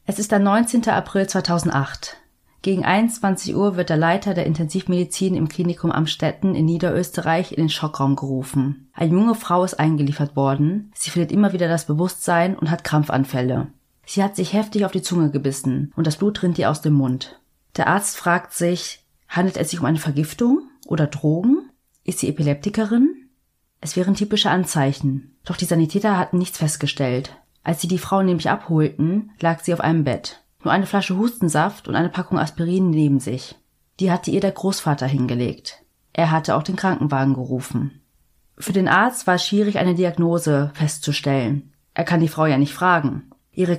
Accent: German